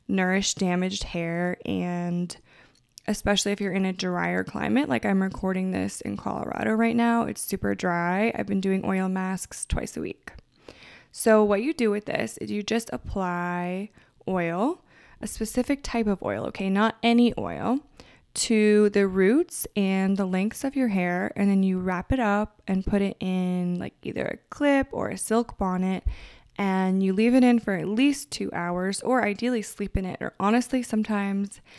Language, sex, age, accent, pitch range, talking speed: English, female, 20-39, American, 185-220 Hz, 180 wpm